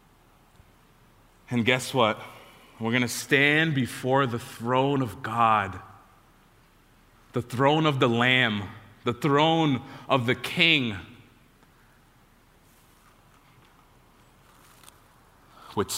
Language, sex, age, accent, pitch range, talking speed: English, male, 30-49, American, 120-160 Hz, 85 wpm